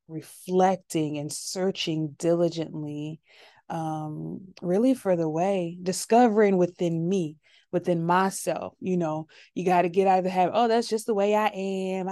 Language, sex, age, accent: English, female, 20-39, American